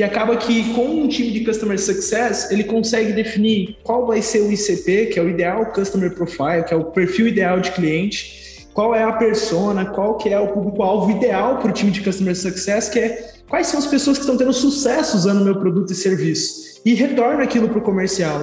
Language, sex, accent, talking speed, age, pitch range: Portuguese, male, Brazilian, 230 wpm, 20-39, 195-245 Hz